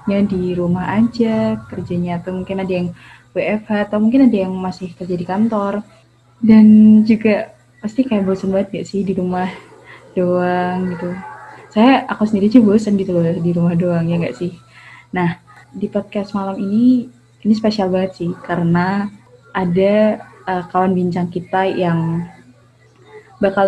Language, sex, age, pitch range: Indonesian, female, 20-39, 180-215 Hz